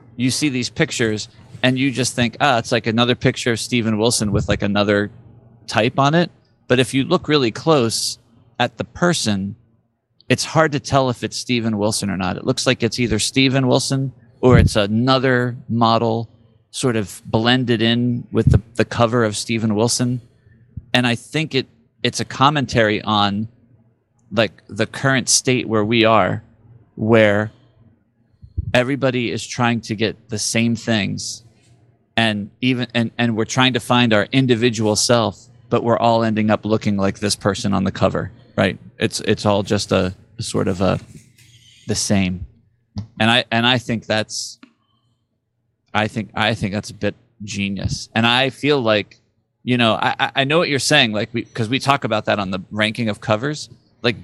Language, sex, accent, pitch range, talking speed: English, male, American, 110-125 Hz, 175 wpm